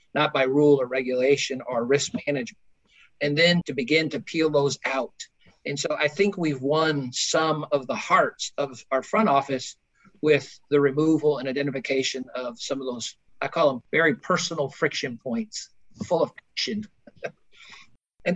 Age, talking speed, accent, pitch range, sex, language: 50-69, 165 wpm, American, 145-185 Hz, male, English